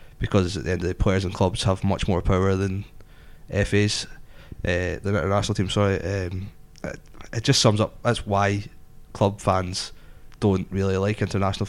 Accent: British